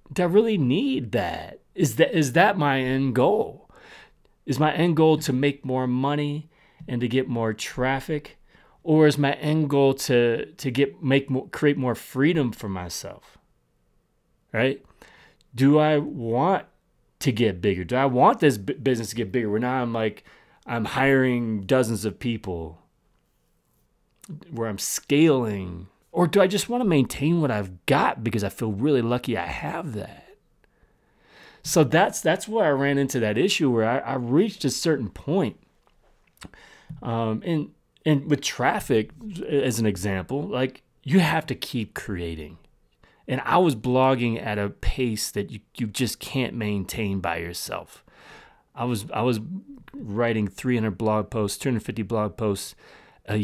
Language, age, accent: English, 30-49, American